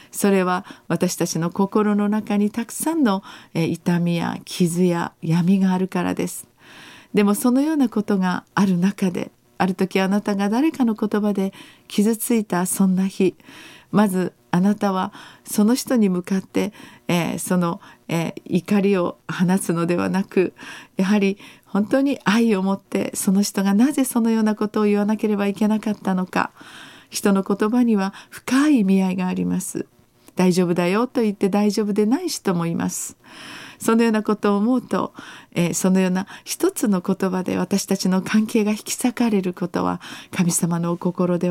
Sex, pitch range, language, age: female, 180-215 Hz, Japanese, 40-59